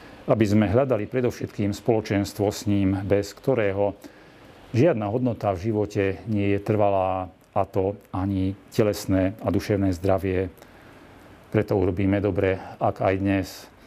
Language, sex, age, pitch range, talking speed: Slovak, male, 40-59, 95-105 Hz, 125 wpm